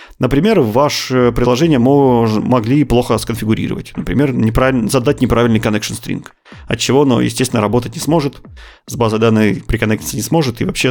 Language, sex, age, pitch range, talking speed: Russian, male, 30-49, 110-130 Hz, 155 wpm